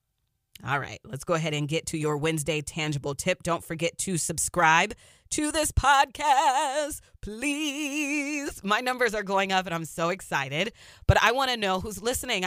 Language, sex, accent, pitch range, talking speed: English, female, American, 165-220 Hz, 175 wpm